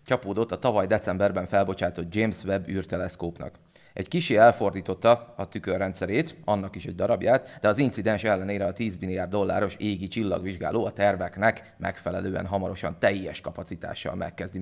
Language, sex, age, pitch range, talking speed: Hungarian, male, 30-49, 95-110 Hz, 140 wpm